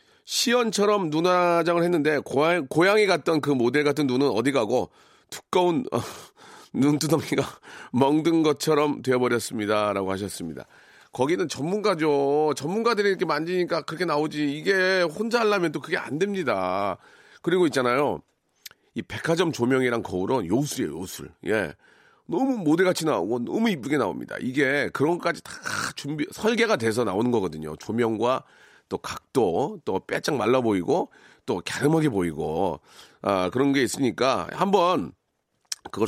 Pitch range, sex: 125-180 Hz, male